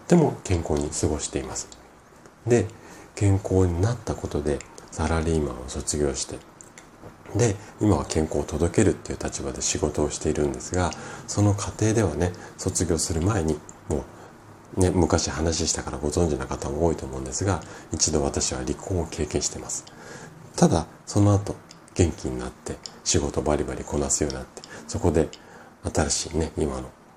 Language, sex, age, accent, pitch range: Japanese, male, 40-59, native, 75-100 Hz